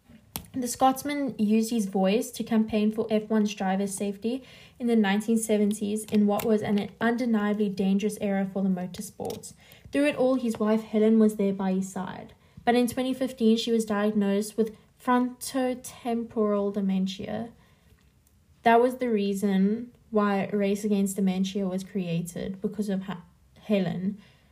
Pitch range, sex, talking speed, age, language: 200-235 Hz, female, 140 wpm, 10-29, English